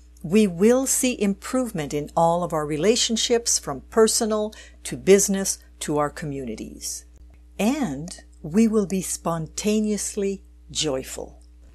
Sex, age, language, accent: female, 60-79, English, American